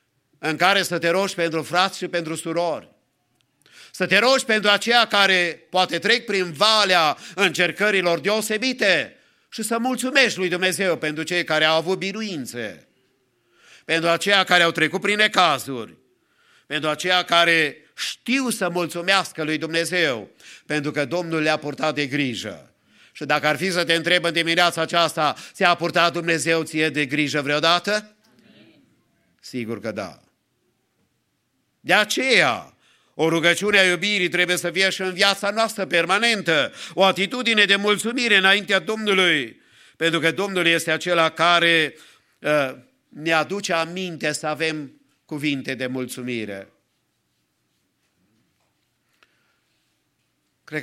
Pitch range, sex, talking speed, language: 145-190 Hz, male, 130 wpm, English